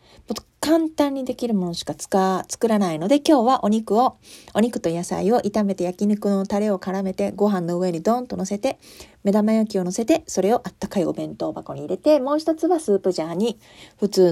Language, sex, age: Japanese, female, 40-59